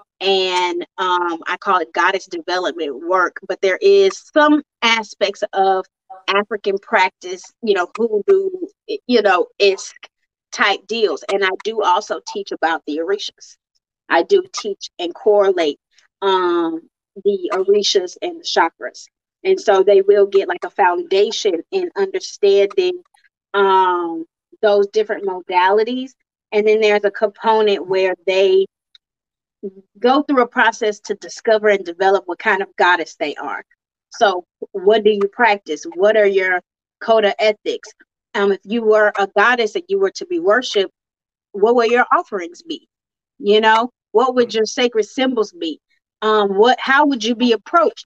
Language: English